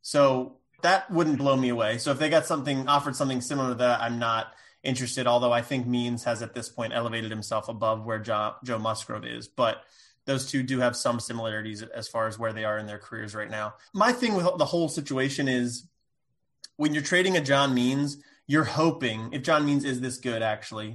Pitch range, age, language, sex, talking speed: 115-140 Hz, 20-39, English, male, 210 wpm